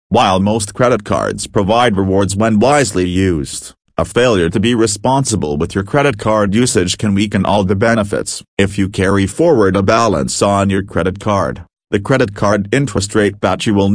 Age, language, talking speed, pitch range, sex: 40-59, English, 180 wpm, 95-115 Hz, male